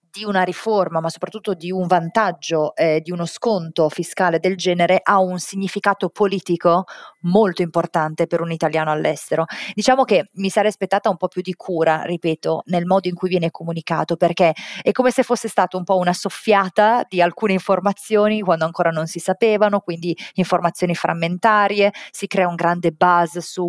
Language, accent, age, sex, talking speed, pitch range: Italian, native, 30-49, female, 175 wpm, 170-195 Hz